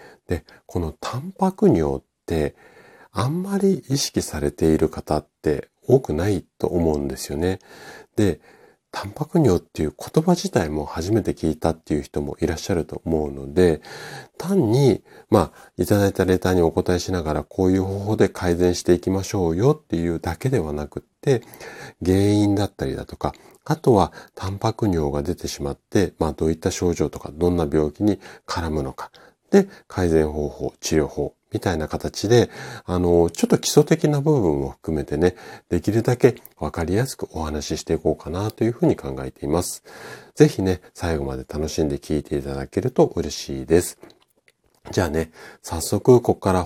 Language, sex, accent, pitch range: Japanese, male, native, 75-105 Hz